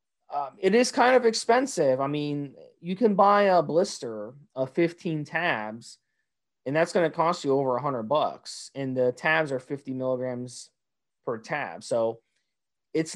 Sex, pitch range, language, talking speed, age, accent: male, 135-180 Hz, English, 160 wpm, 30-49, American